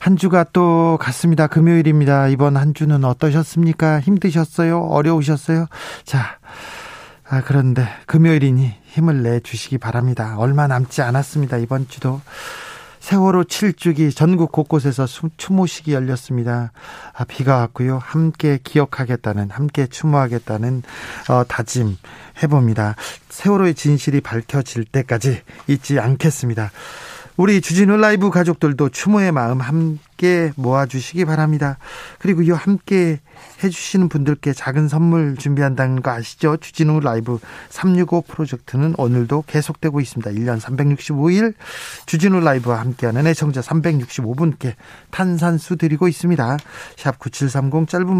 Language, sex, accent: Korean, male, native